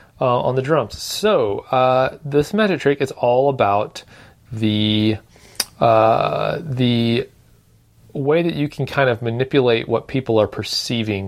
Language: English